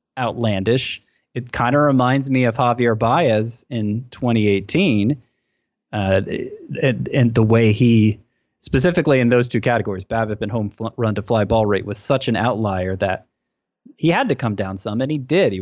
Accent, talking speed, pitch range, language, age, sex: American, 175 wpm, 105-125 Hz, English, 20-39, male